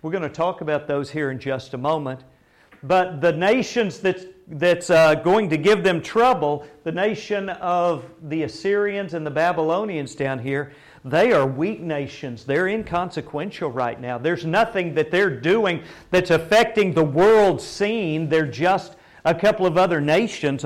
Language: English